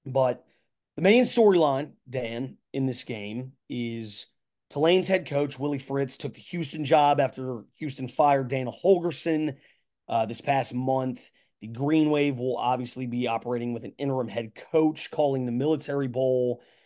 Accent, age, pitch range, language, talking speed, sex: American, 30-49, 125-150 Hz, English, 155 wpm, male